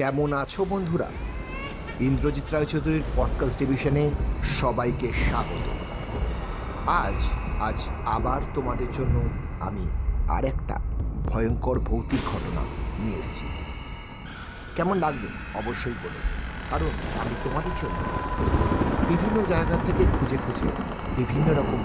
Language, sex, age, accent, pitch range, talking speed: Bengali, male, 50-69, native, 90-135 Hz, 95 wpm